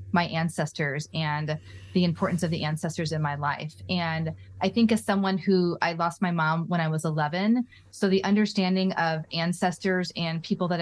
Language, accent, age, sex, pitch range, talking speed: English, American, 20-39, female, 170-215 Hz, 185 wpm